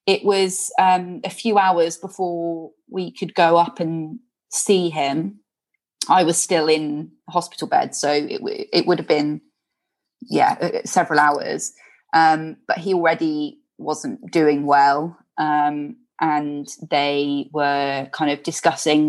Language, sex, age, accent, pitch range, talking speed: English, female, 20-39, British, 155-215 Hz, 135 wpm